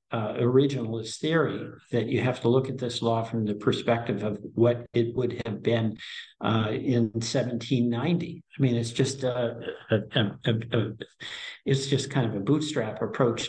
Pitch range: 115-130 Hz